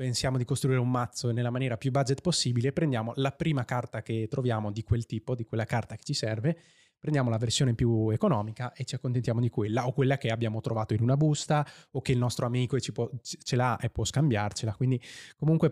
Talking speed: 210 wpm